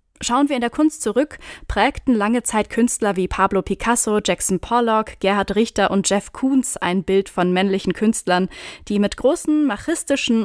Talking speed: 165 wpm